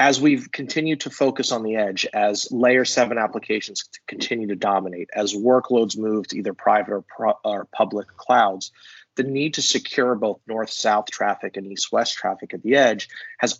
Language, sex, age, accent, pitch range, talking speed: English, male, 30-49, American, 110-130 Hz, 175 wpm